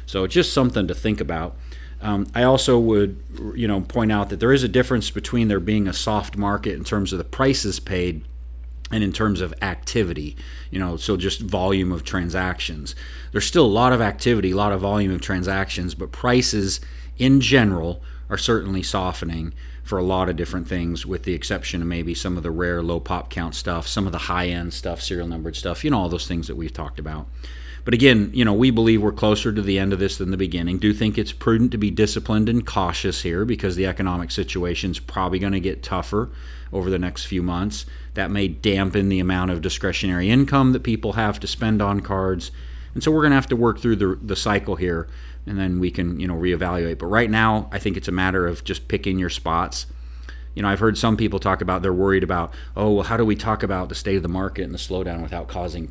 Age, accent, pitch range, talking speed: 40-59, American, 85-105 Hz, 235 wpm